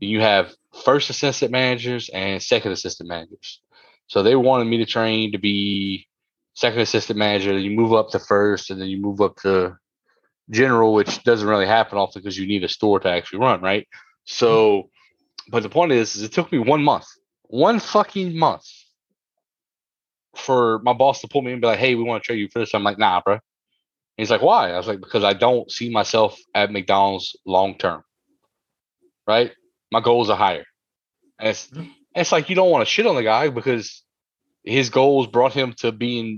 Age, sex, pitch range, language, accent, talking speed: 20-39, male, 105-130 Hz, English, American, 200 wpm